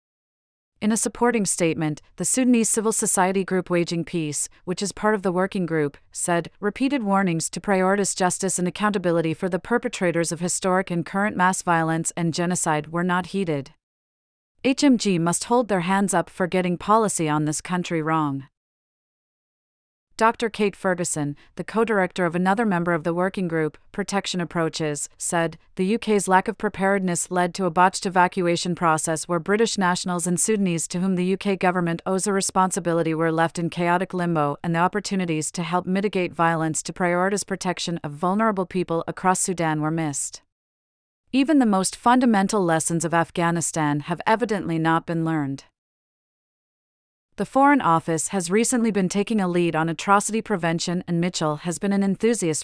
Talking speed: 165 wpm